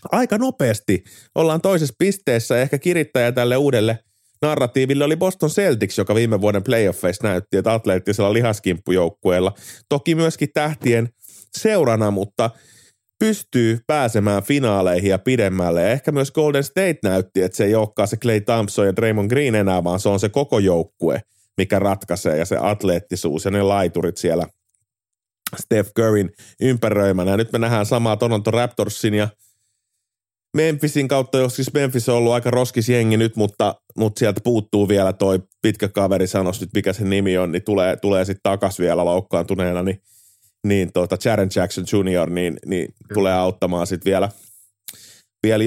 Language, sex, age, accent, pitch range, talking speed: Finnish, male, 30-49, native, 95-125 Hz, 150 wpm